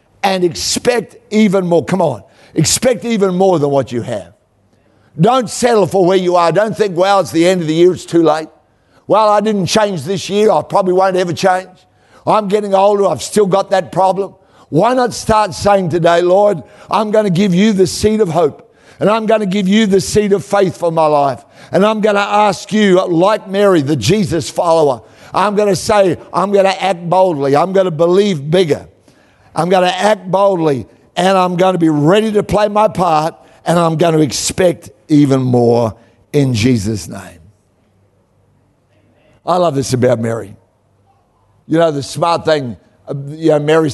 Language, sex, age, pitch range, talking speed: English, male, 60-79, 125-195 Hz, 190 wpm